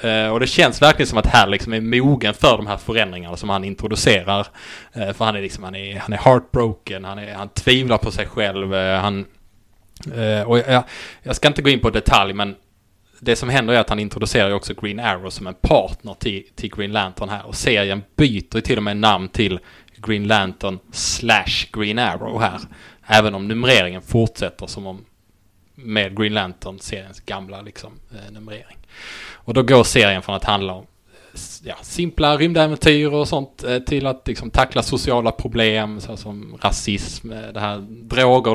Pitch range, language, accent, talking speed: 100-120 Hz, English, Norwegian, 165 wpm